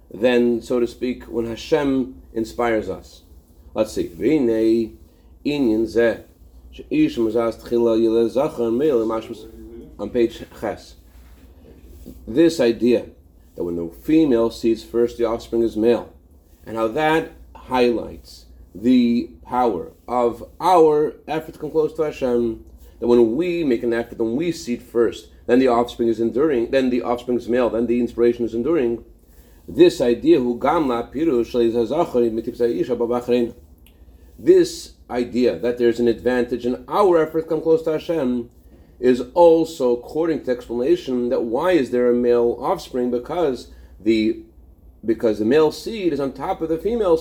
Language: English